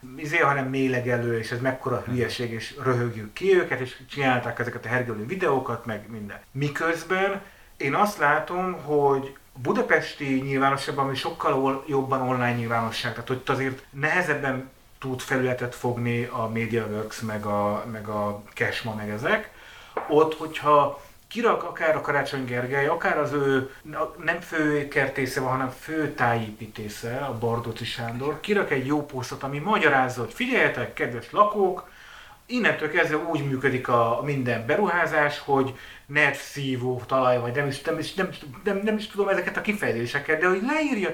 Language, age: Hungarian, 30-49